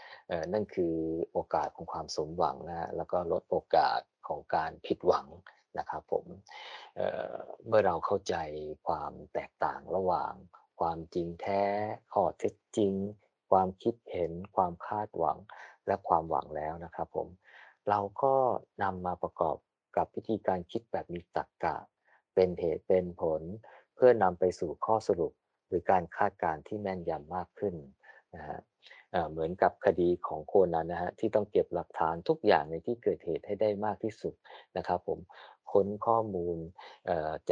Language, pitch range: Thai, 85-105 Hz